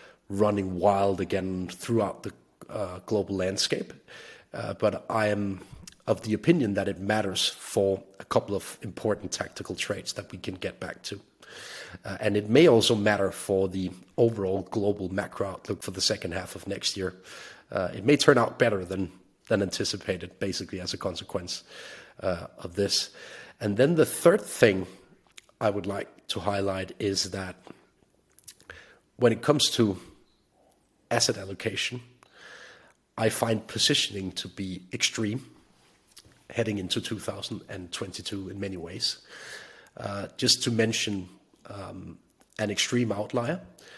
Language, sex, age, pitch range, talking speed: English, male, 40-59, 95-115 Hz, 140 wpm